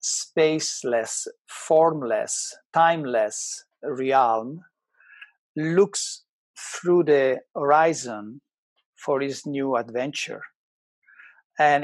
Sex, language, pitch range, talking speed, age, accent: male, English, 130-165 Hz, 65 wpm, 50-69, Italian